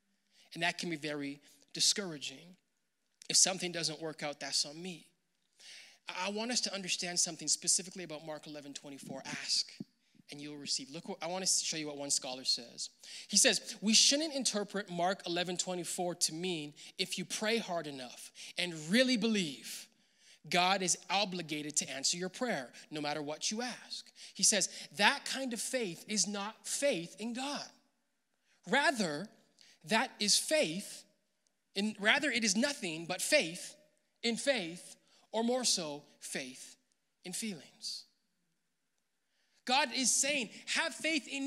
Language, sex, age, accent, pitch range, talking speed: English, male, 20-39, American, 175-270 Hz, 150 wpm